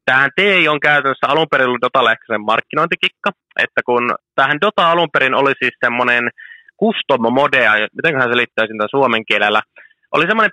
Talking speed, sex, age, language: 160 wpm, male, 20-39, Finnish